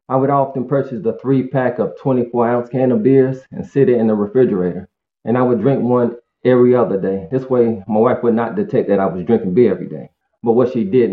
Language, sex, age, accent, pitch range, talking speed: English, male, 20-39, American, 105-130 Hz, 245 wpm